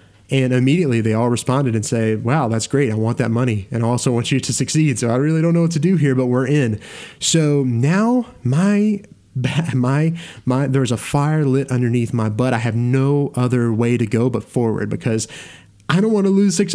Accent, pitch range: American, 120-155 Hz